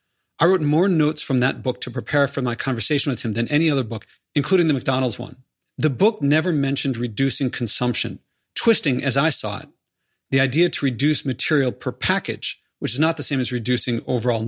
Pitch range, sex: 125-155 Hz, male